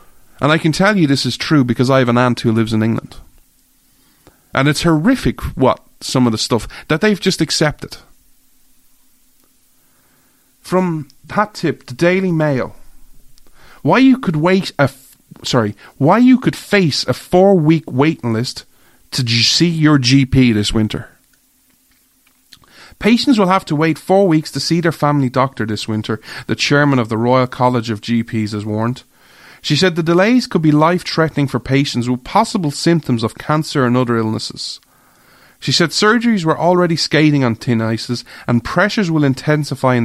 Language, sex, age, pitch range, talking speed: English, male, 30-49, 120-165 Hz, 165 wpm